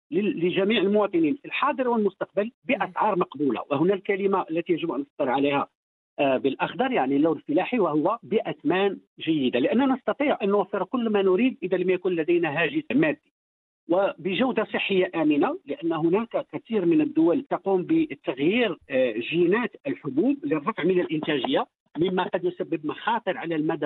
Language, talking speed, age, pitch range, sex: English, 140 wpm, 50-69, 175-245 Hz, male